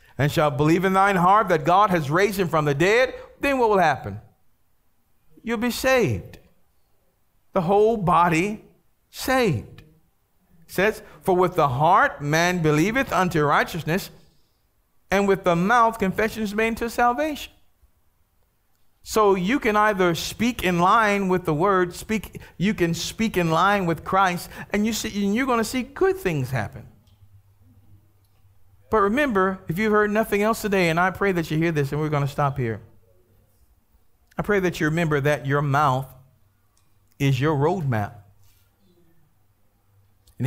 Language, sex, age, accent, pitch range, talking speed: English, male, 50-69, American, 125-195 Hz, 155 wpm